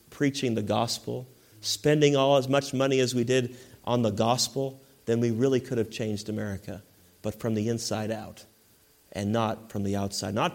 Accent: American